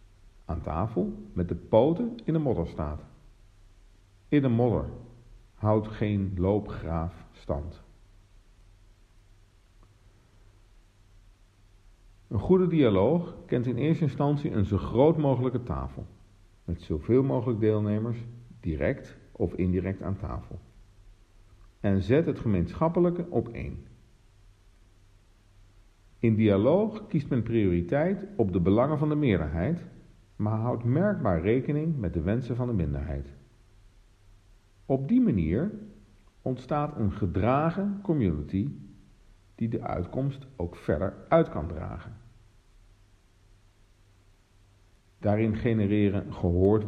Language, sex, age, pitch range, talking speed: Dutch, male, 50-69, 95-120 Hz, 105 wpm